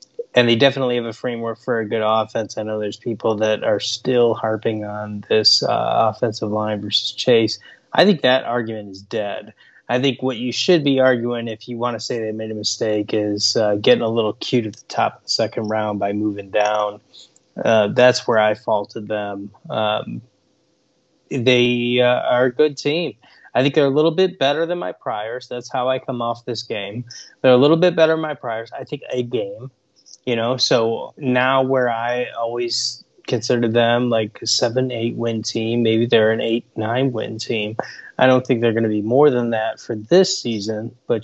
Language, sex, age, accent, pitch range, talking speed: English, male, 20-39, American, 110-130 Hz, 205 wpm